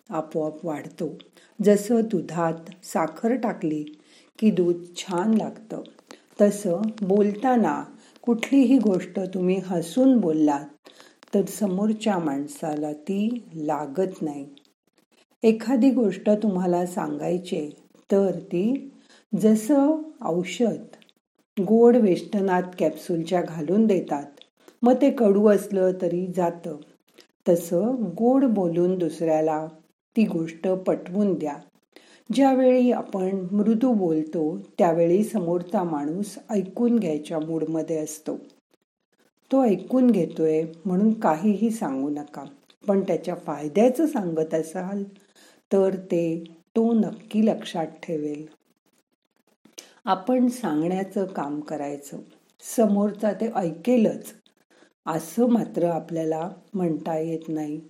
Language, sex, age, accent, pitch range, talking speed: Marathi, female, 50-69, native, 165-225 Hz, 95 wpm